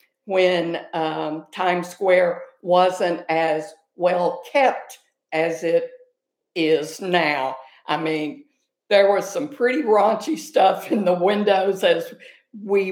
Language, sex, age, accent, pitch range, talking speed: English, female, 60-79, American, 165-215 Hz, 115 wpm